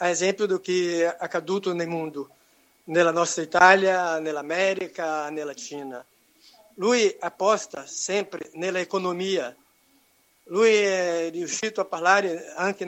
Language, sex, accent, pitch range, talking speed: Italian, male, Brazilian, 170-200 Hz, 120 wpm